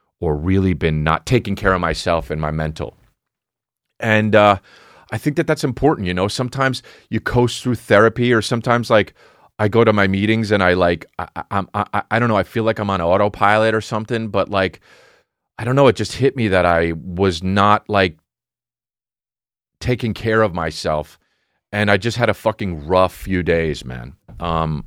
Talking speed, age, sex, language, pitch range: 190 wpm, 30-49, male, English, 80-110 Hz